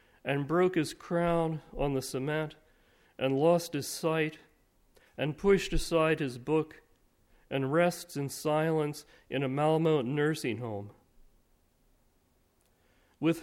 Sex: male